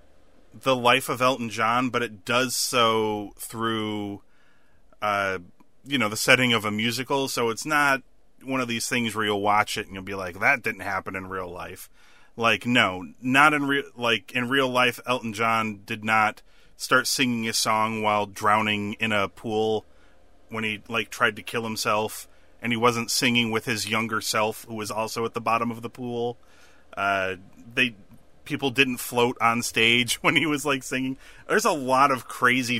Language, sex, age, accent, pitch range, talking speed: English, male, 30-49, American, 105-130 Hz, 185 wpm